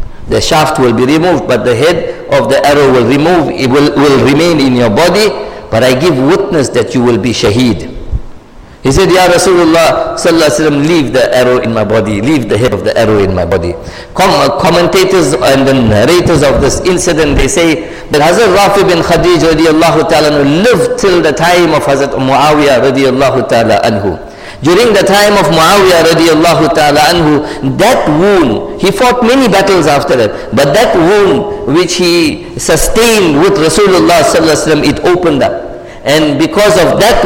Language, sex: English, male